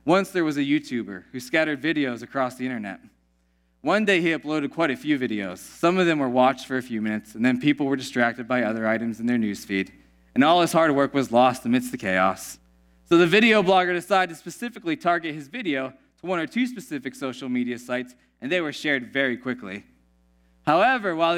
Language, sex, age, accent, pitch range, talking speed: English, male, 20-39, American, 120-165 Hz, 210 wpm